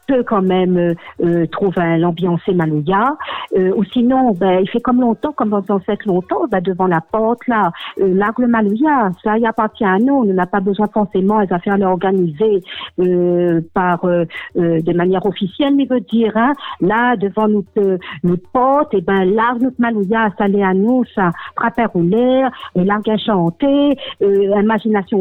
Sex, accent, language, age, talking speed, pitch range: female, French, French, 50-69, 180 wpm, 195-250 Hz